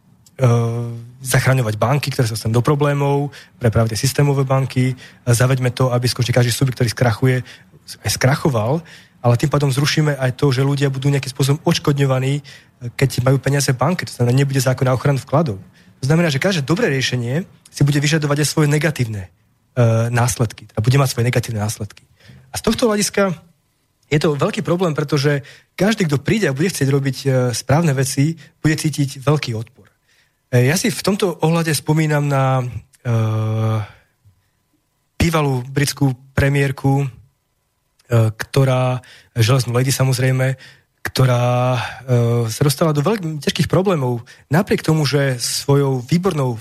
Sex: male